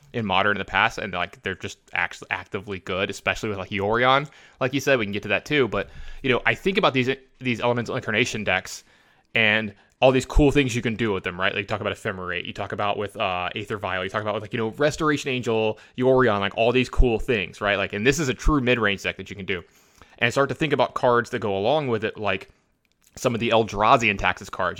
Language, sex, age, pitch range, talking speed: English, male, 20-39, 105-130 Hz, 260 wpm